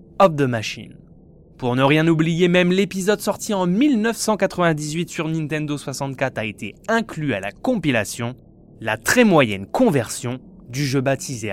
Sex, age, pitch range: male, 20-39, 125-180 Hz